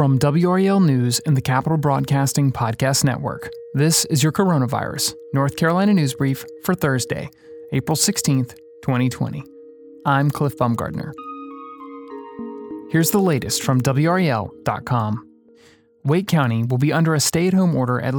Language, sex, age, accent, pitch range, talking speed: English, male, 30-49, American, 130-160 Hz, 130 wpm